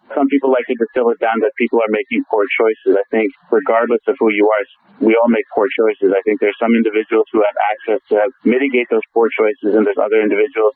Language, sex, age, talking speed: English, male, 30-49, 235 wpm